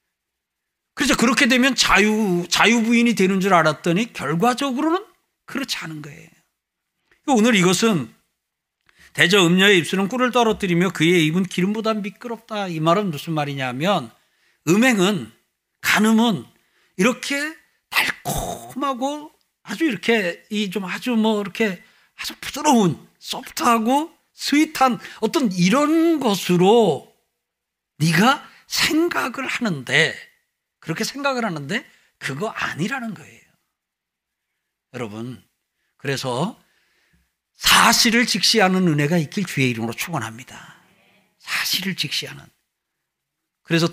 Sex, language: male, Korean